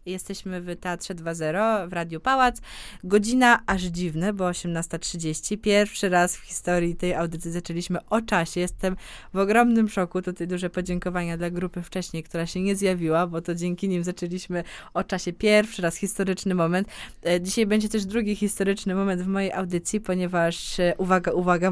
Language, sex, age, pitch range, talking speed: Polish, female, 20-39, 175-210 Hz, 160 wpm